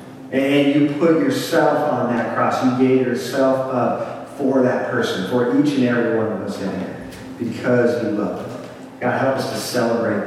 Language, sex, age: English, male, 40-59